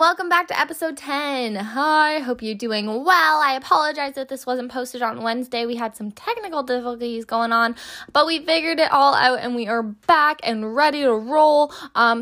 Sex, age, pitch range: female, 10-29, 220-275 Hz